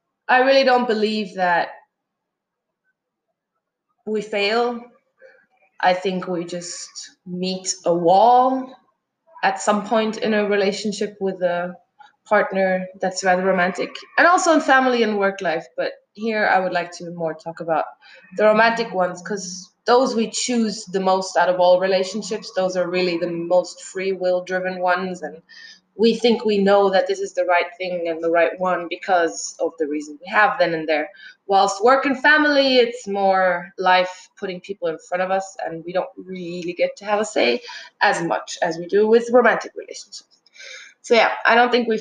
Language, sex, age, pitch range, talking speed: English, female, 20-39, 180-225 Hz, 175 wpm